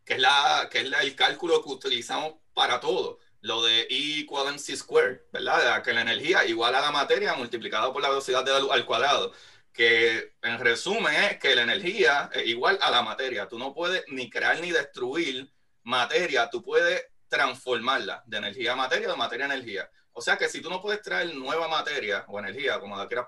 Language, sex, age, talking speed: Spanish, male, 30-49, 210 wpm